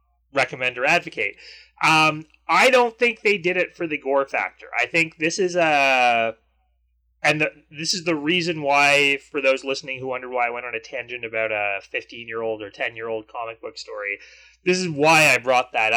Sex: male